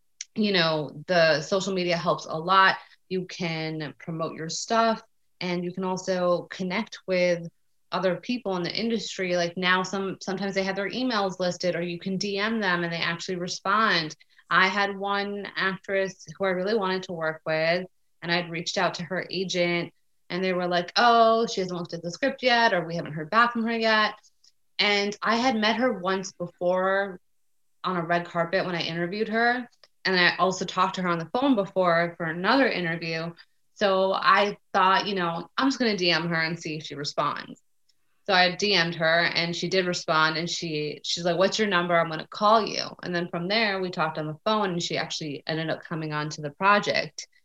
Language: English